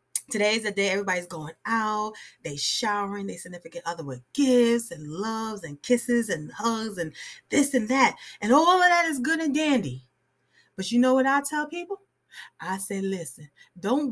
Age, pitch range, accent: 30-49, 195-270 Hz, American